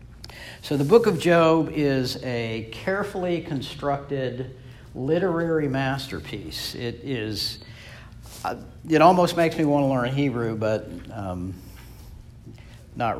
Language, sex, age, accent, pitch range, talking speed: English, male, 60-79, American, 110-145 Hz, 105 wpm